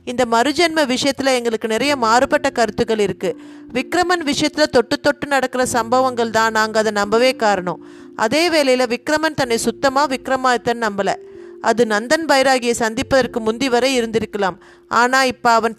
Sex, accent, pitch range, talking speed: female, native, 220-270 Hz, 140 wpm